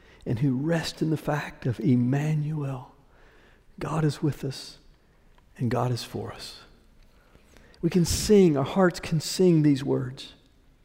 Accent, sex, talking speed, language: American, male, 145 wpm, English